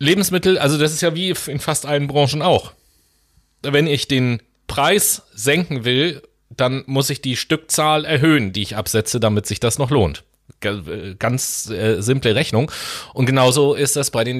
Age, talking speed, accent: 30-49, 170 wpm, German